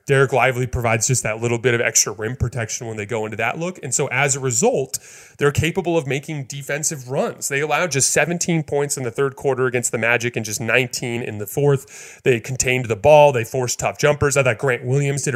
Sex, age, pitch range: male, 30-49, 115-140 Hz